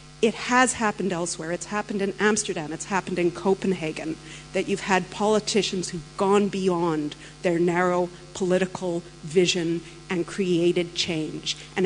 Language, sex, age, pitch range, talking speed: English, female, 50-69, 160-185 Hz, 135 wpm